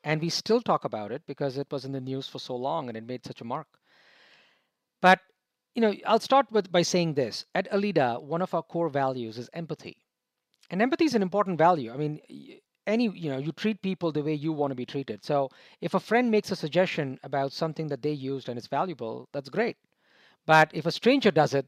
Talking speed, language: 230 wpm, English